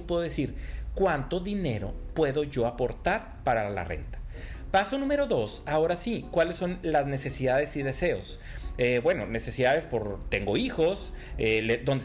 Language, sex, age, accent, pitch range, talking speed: Spanish, male, 40-59, Mexican, 125-175 Hz, 145 wpm